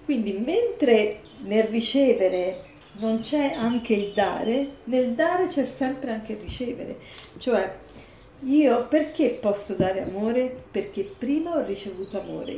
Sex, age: female, 50-69